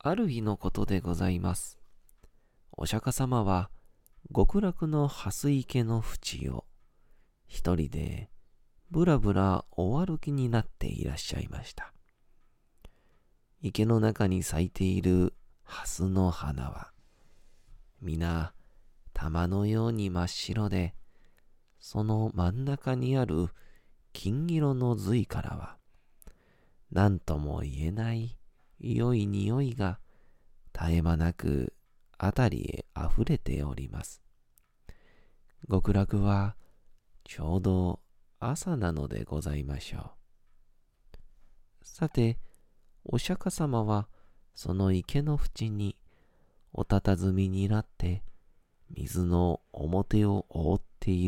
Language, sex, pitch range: Japanese, male, 85-115 Hz